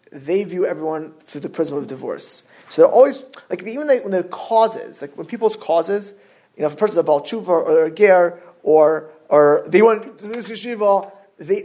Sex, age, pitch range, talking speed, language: male, 20-39, 175-265 Hz, 210 wpm, English